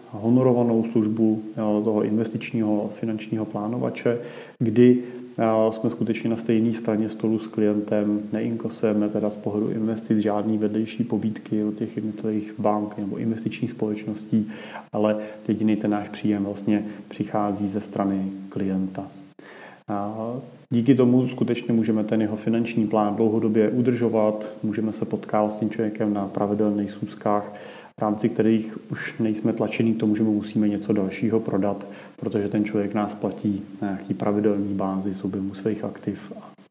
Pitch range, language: 105-115 Hz, Czech